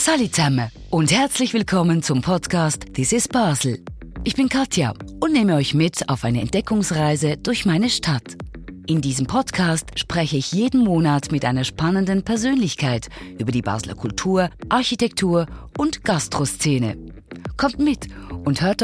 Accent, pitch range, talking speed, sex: German, 145-215 Hz, 140 wpm, female